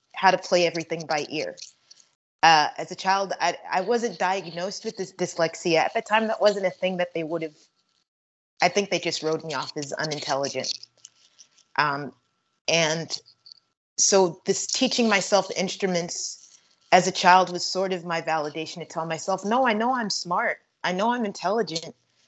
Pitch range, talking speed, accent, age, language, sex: 165-195 Hz, 170 wpm, American, 20-39, English, female